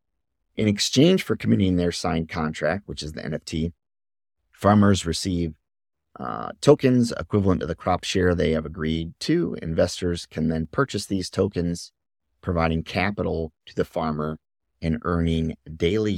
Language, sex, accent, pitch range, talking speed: English, male, American, 80-100 Hz, 140 wpm